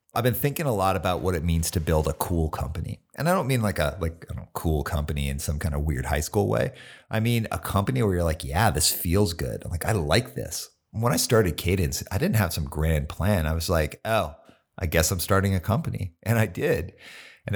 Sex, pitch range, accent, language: male, 80-110 Hz, American, English